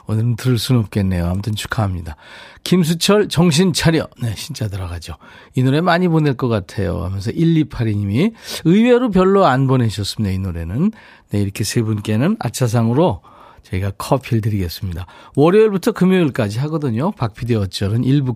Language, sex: Korean, male